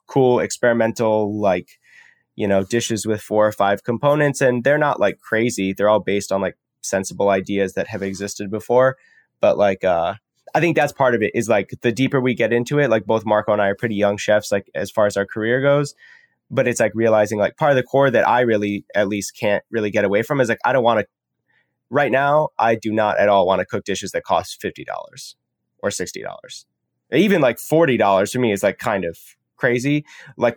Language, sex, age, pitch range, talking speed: English, male, 10-29, 100-125 Hz, 220 wpm